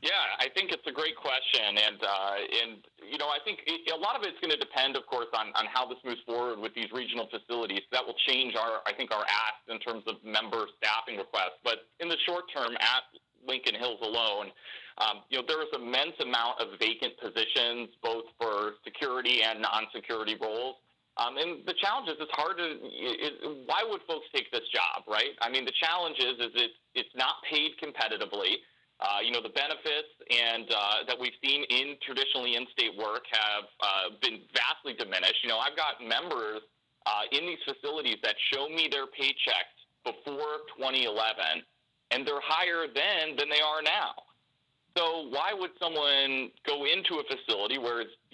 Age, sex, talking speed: 30-49, male, 190 wpm